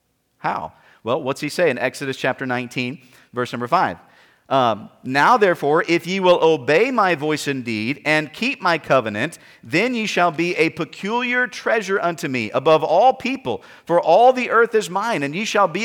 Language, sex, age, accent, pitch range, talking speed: English, male, 40-59, American, 160-215 Hz, 180 wpm